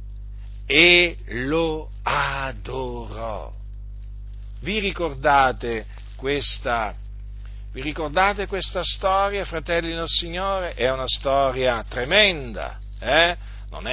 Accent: native